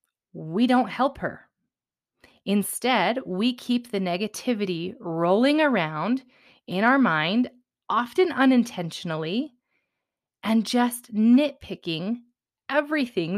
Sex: female